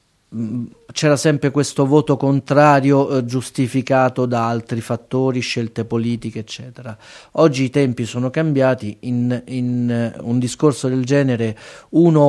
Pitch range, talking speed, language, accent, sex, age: 120-140 Hz, 120 wpm, Italian, native, male, 30-49